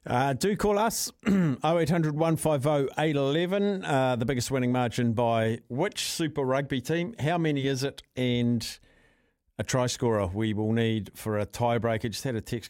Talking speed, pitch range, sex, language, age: 160 wpm, 115-150 Hz, male, English, 50-69